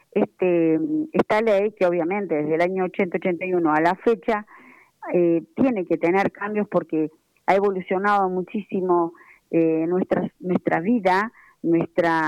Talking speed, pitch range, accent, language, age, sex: 130 wpm, 170-210 Hz, Argentinian, Spanish, 40-59, female